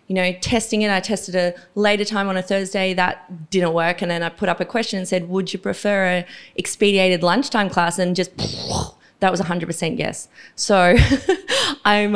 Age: 20-39